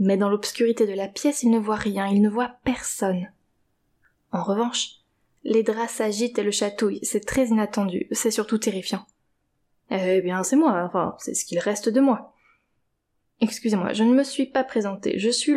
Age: 20-39